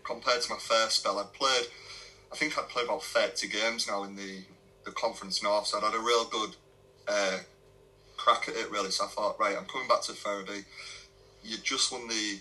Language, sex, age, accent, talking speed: English, male, 30-49, British, 215 wpm